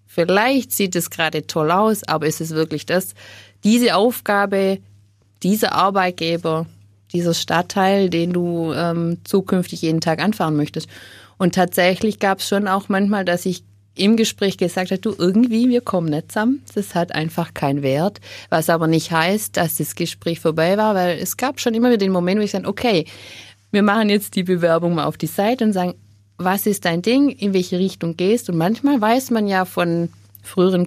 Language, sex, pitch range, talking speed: German, female, 155-200 Hz, 190 wpm